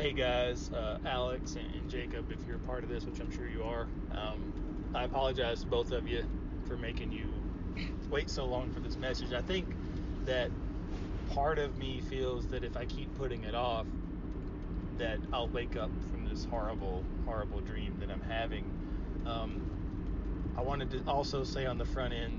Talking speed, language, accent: 185 wpm, English, American